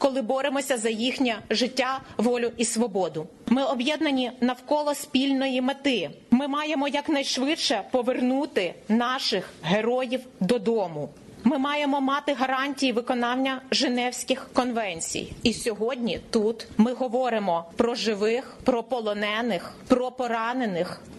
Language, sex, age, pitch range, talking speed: Ukrainian, female, 30-49, 180-240 Hz, 110 wpm